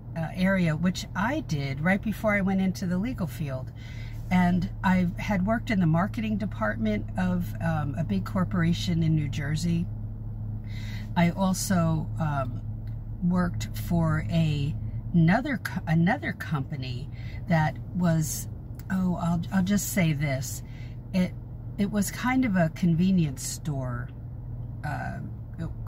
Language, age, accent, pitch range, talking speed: English, 50-69, American, 115-175 Hz, 130 wpm